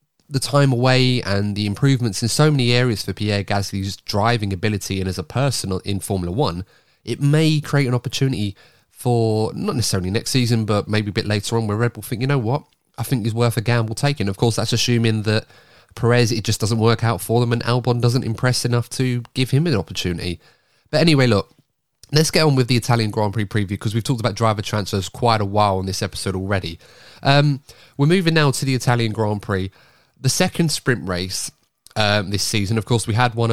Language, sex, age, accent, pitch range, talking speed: English, male, 30-49, British, 105-135 Hz, 215 wpm